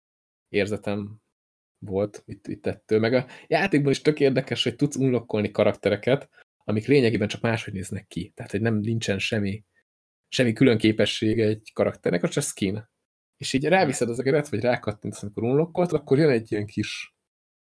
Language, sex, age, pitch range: Hungarian, male, 20-39, 105-135 Hz